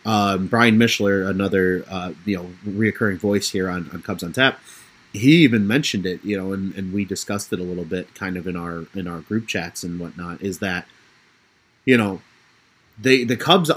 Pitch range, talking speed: 95-120 Hz, 200 wpm